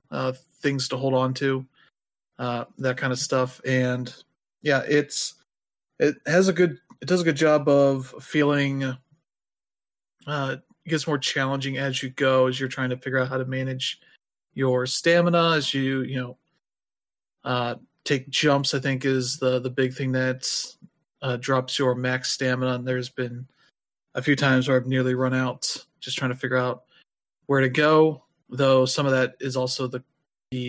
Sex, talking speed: male, 180 wpm